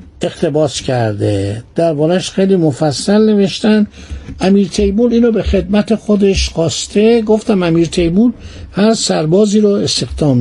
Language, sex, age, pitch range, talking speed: Persian, male, 60-79, 165-215 Hz, 120 wpm